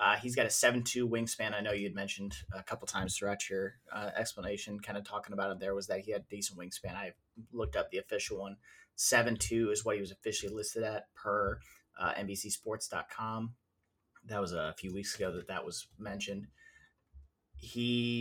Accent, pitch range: American, 100-115 Hz